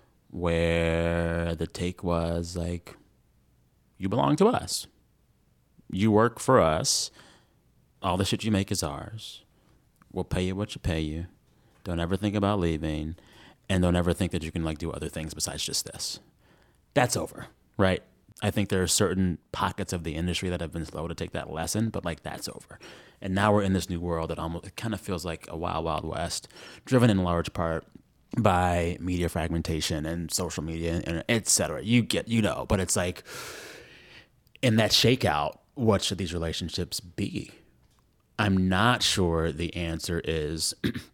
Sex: male